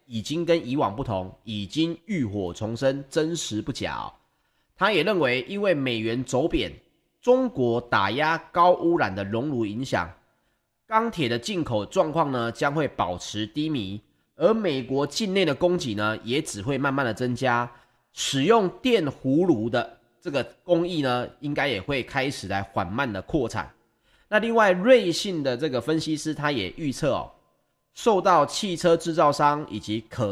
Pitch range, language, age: 110-170 Hz, Chinese, 30-49